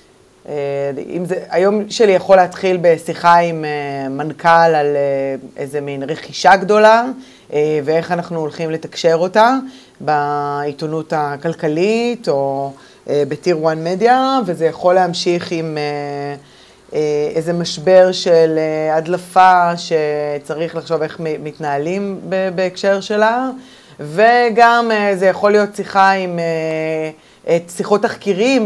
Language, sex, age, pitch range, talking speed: Hebrew, female, 20-39, 155-190 Hz, 120 wpm